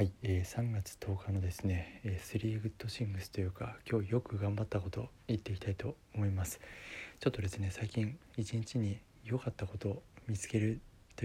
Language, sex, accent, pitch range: Japanese, male, native, 95-110 Hz